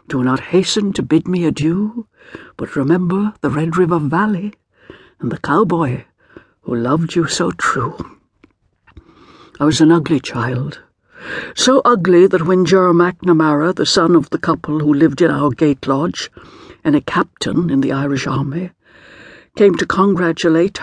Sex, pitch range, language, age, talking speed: female, 145-190 Hz, English, 60-79, 155 wpm